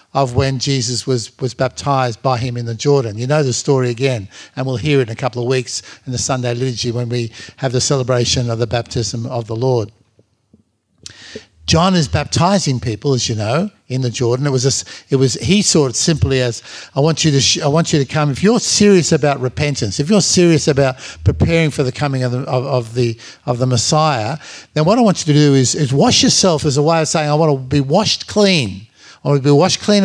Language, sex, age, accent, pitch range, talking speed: English, male, 50-69, Australian, 125-160 Hz, 240 wpm